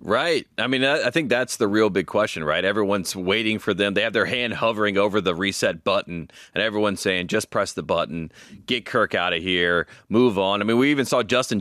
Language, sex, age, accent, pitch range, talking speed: English, male, 30-49, American, 95-115 Hz, 225 wpm